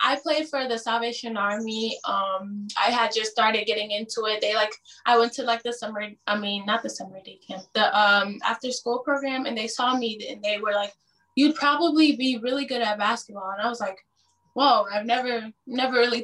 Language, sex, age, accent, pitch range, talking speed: English, female, 10-29, American, 210-250 Hz, 215 wpm